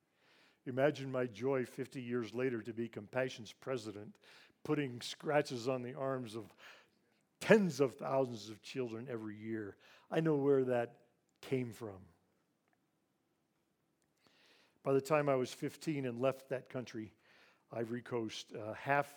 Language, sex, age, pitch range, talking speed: English, male, 50-69, 115-135 Hz, 135 wpm